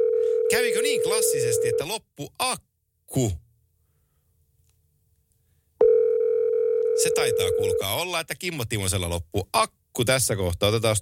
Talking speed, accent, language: 85 wpm, native, Finnish